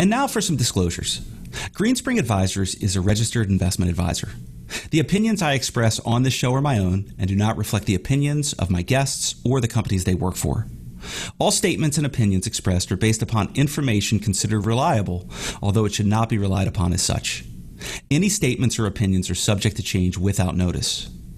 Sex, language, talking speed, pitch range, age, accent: male, English, 190 wpm, 95-130 Hz, 40-59, American